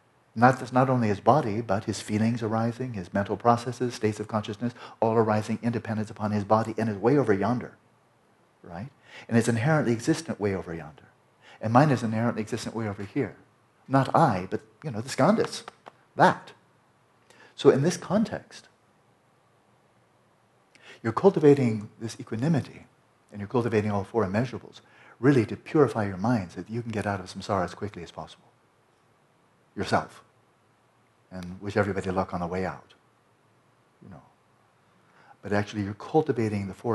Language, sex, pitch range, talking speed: English, male, 100-120 Hz, 160 wpm